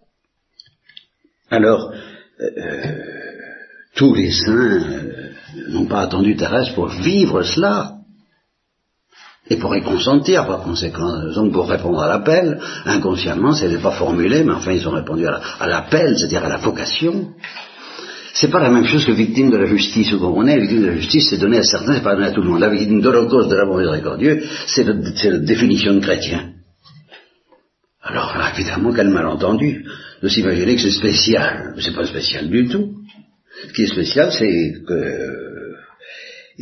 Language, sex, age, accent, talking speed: Italian, male, 60-79, French, 180 wpm